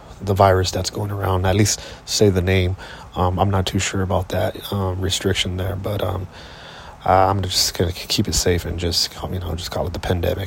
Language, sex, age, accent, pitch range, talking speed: English, male, 30-49, American, 90-100 Hz, 210 wpm